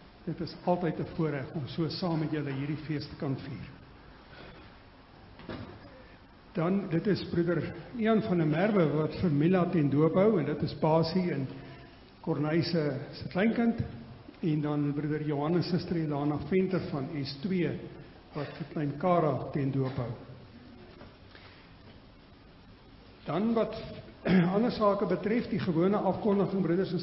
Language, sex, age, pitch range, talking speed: English, male, 60-79, 145-180 Hz, 140 wpm